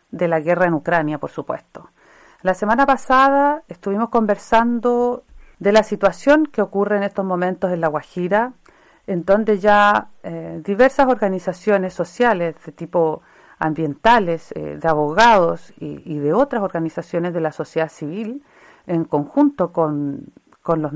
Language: Spanish